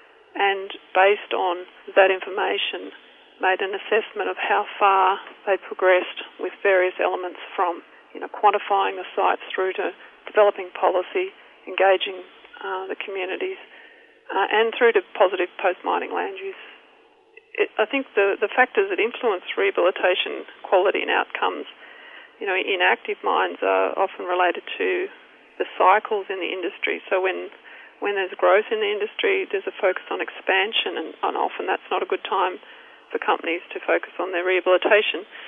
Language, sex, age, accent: English, female, 40-59, Australian